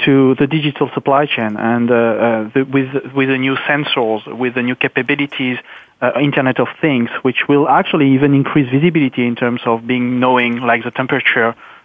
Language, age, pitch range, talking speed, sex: English, 40-59, 120-145 Hz, 175 wpm, male